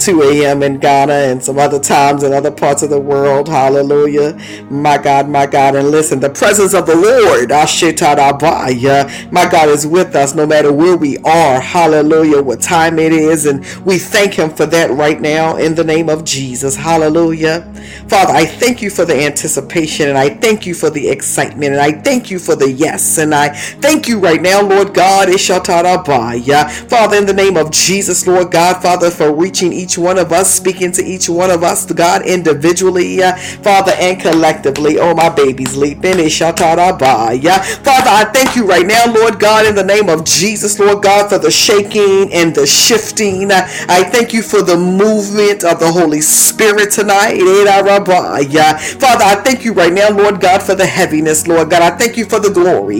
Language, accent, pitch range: English, American, 150-195 Hz